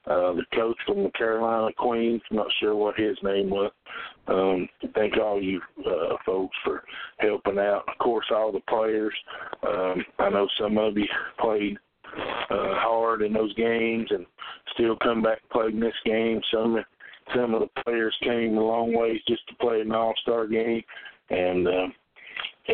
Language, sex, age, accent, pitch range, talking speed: English, male, 50-69, American, 100-130 Hz, 170 wpm